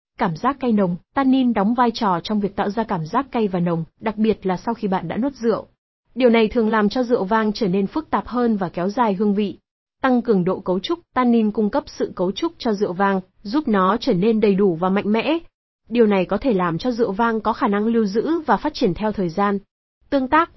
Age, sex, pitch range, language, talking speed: 20-39, female, 200-245 Hz, Vietnamese, 255 wpm